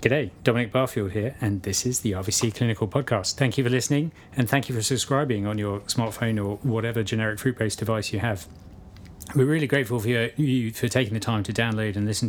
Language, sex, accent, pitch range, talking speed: English, male, British, 105-125 Hz, 210 wpm